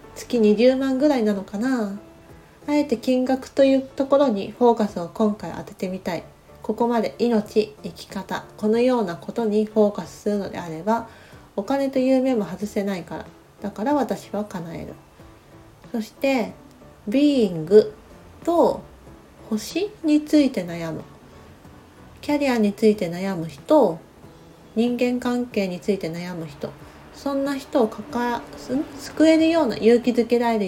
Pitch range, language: 195-265 Hz, Japanese